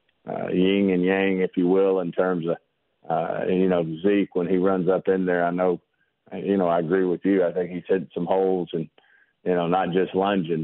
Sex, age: male, 50-69